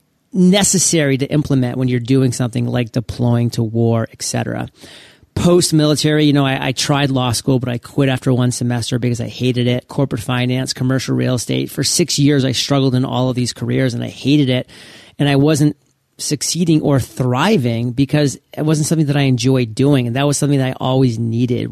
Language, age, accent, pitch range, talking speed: English, 40-59, American, 125-145 Hz, 195 wpm